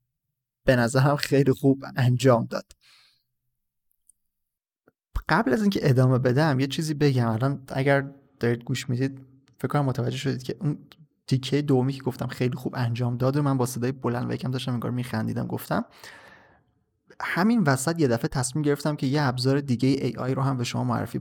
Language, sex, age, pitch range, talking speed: Persian, male, 30-49, 125-145 Hz, 175 wpm